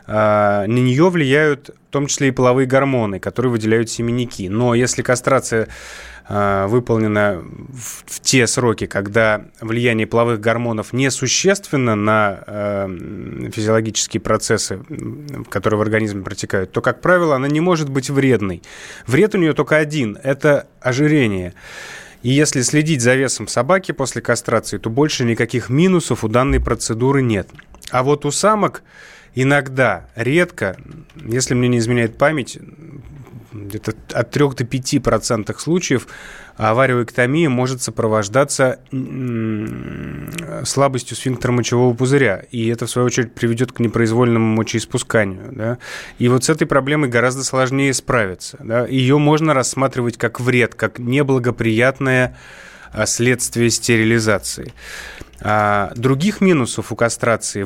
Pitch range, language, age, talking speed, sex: 110-135 Hz, Russian, 20-39, 125 wpm, male